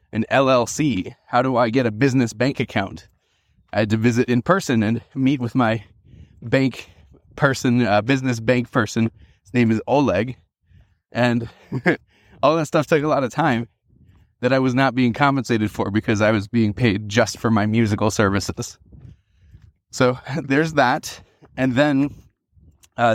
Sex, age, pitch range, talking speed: male, 20-39, 110-130 Hz, 160 wpm